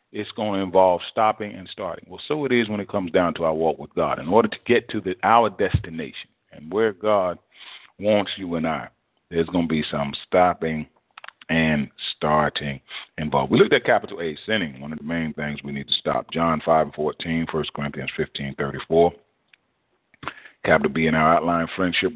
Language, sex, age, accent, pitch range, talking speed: English, male, 40-59, American, 75-90 Hz, 200 wpm